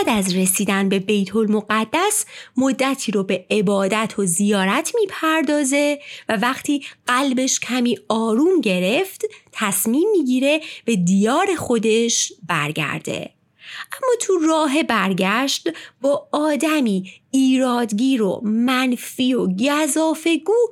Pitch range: 205-320 Hz